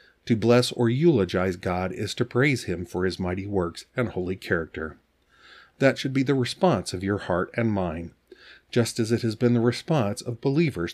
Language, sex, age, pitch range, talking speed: English, male, 50-69, 95-125 Hz, 190 wpm